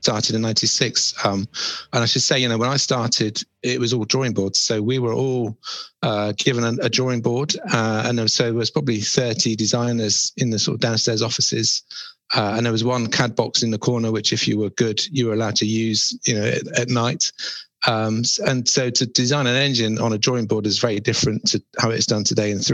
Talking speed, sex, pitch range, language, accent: 230 wpm, male, 110-125 Hz, English, British